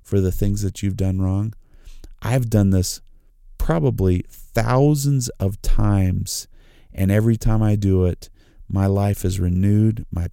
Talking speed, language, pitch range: 145 wpm, English, 95-110 Hz